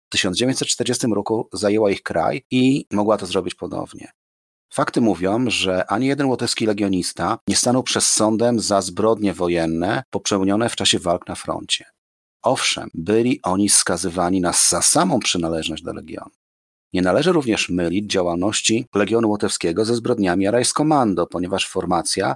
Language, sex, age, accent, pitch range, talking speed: Polish, male, 40-59, native, 95-115 Hz, 140 wpm